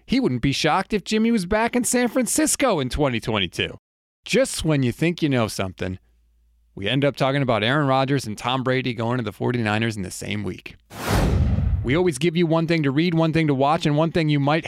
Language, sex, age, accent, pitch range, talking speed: English, male, 30-49, American, 120-165 Hz, 225 wpm